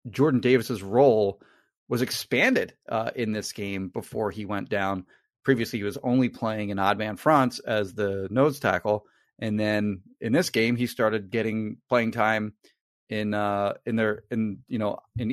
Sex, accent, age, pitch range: male, American, 30-49, 100-120 Hz